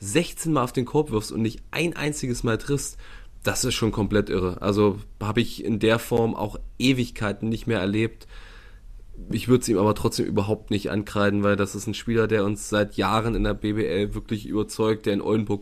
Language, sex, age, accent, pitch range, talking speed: German, male, 20-39, German, 105-130 Hz, 210 wpm